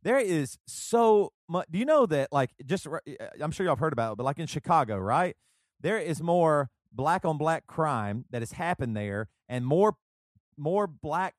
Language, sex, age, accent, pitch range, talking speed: English, male, 40-59, American, 125-170 Hz, 195 wpm